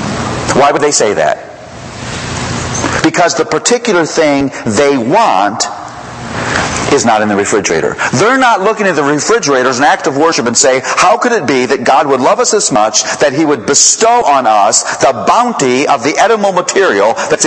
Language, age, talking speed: English, 50-69, 180 wpm